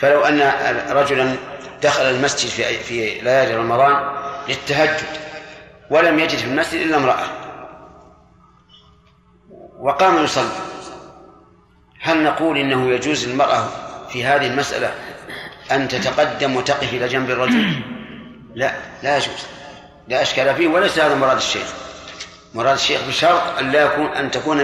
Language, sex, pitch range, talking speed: Arabic, male, 135-165 Hz, 120 wpm